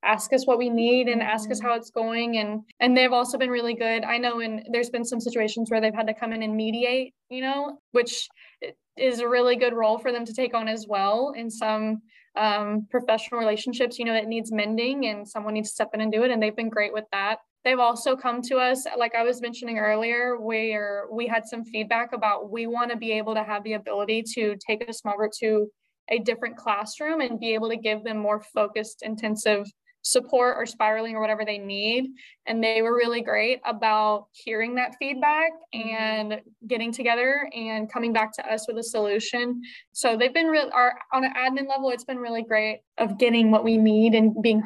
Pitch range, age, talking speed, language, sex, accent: 215-245 Hz, 10-29, 215 wpm, English, female, American